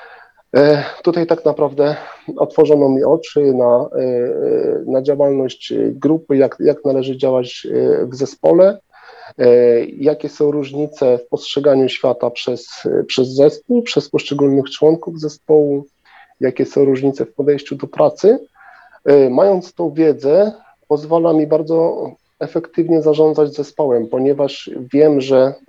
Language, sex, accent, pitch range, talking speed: Polish, male, native, 140-170 Hz, 110 wpm